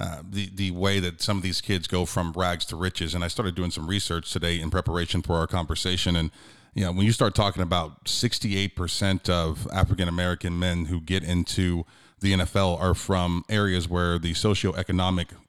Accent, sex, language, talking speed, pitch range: American, male, English, 190 wpm, 90-100 Hz